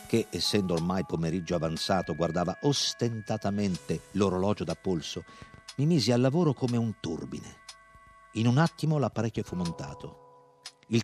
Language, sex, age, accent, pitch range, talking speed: Italian, male, 50-69, native, 90-120 Hz, 130 wpm